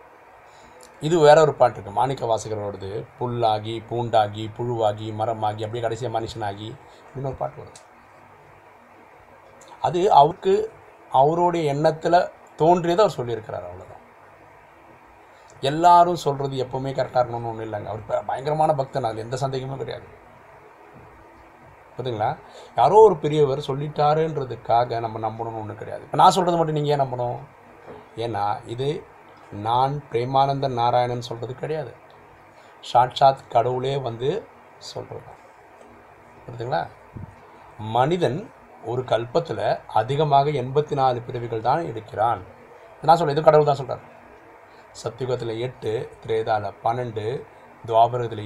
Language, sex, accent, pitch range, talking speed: Tamil, male, native, 115-150 Hz, 105 wpm